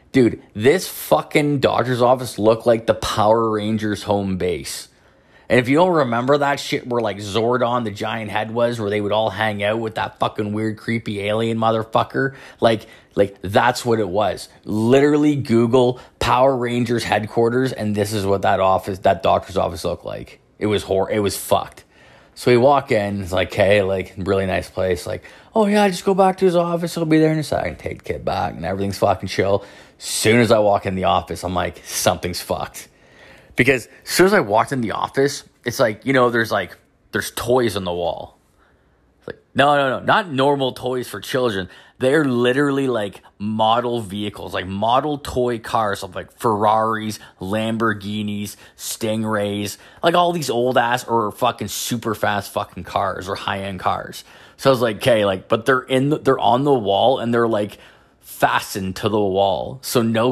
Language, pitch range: English, 105-130 Hz